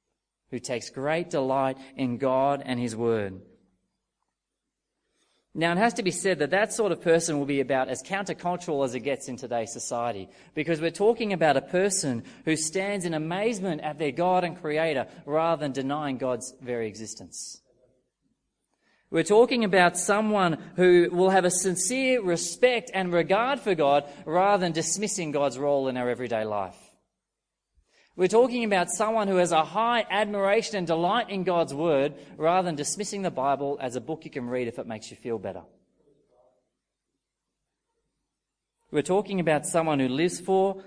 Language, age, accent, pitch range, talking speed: English, 30-49, Australian, 125-180 Hz, 165 wpm